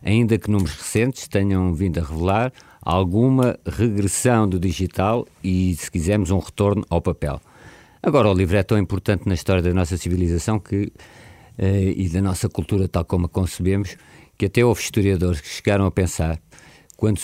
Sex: male